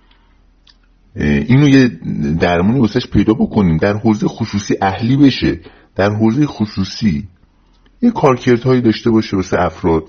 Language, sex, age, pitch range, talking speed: Persian, male, 50-69, 80-115 Hz, 125 wpm